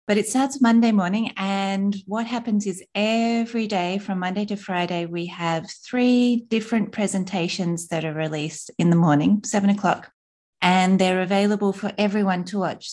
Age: 30-49